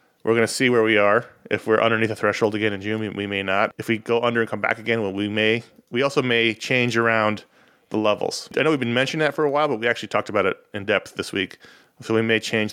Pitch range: 110-125 Hz